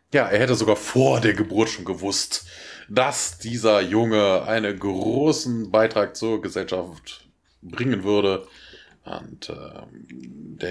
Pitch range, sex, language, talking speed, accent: 90-110 Hz, male, German, 120 wpm, German